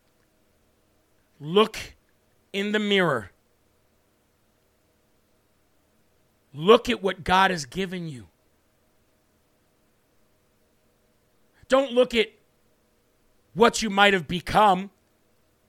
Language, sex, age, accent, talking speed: English, male, 50-69, American, 75 wpm